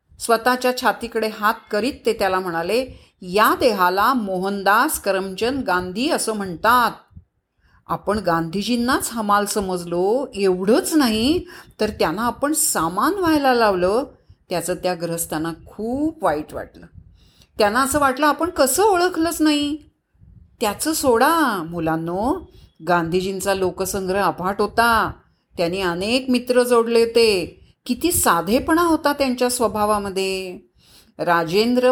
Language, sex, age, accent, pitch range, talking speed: Marathi, female, 40-59, native, 185-260 Hz, 105 wpm